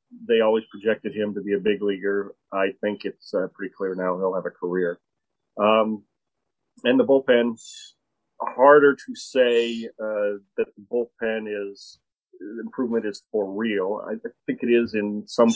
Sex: male